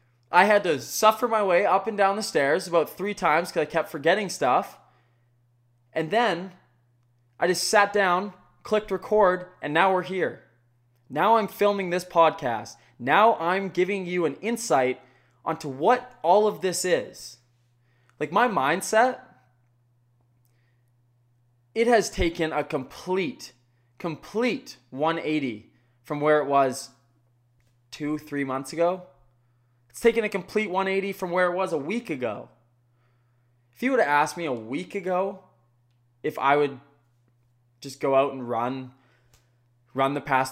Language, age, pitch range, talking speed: English, 20-39, 120-190 Hz, 145 wpm